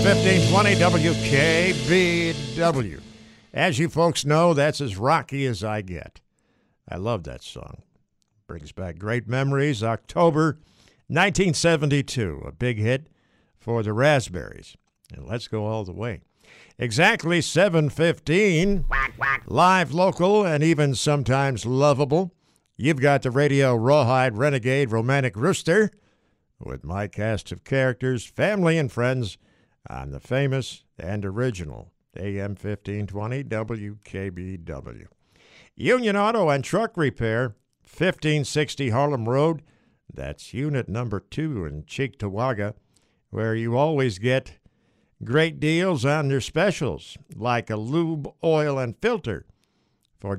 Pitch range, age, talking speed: 110-155 Hz, 60-79, 115 wpm